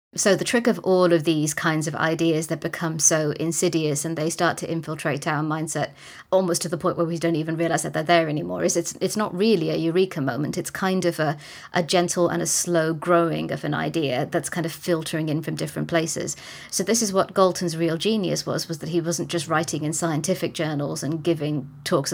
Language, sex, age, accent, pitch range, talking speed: English, female, 30-49, British, 155-175 Hz, 225 wpm